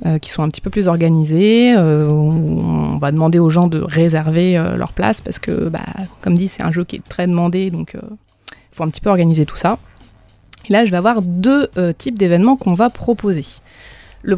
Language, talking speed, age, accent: French, 230 wpm, 20-39, French